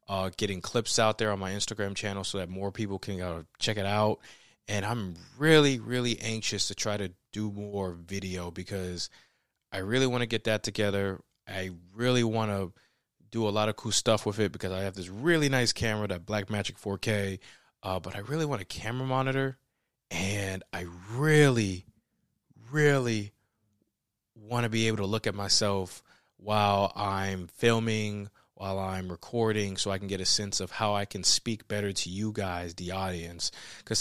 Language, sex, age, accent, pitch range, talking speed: English, male, 20-39, American, 95-115 Hz, 180 wpm